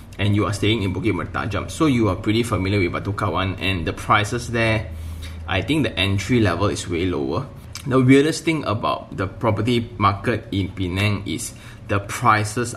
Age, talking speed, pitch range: 20-39, 180 wpm, 100-115 Hz